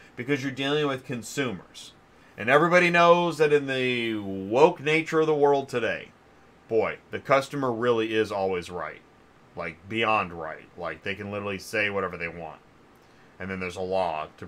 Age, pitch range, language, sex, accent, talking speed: 30-49, 110-155 Hz, English, male, American, 170 wpm